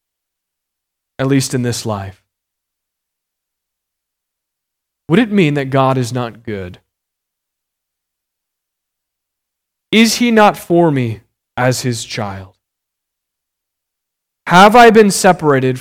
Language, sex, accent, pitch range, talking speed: English, male, American, 115-155 Hz, 95 wpm